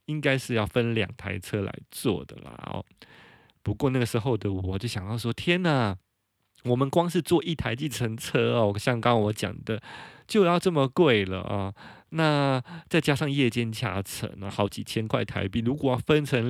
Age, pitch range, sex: 20-39, 115-160 Hz, male